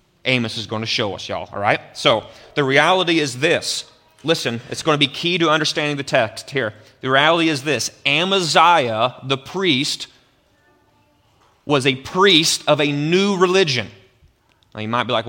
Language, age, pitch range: English, 30-49, 125-165 Hz